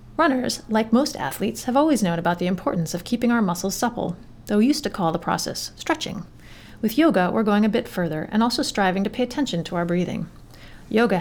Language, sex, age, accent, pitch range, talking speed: English, female, 30-49, American, 170-235 Hz, 215 wpm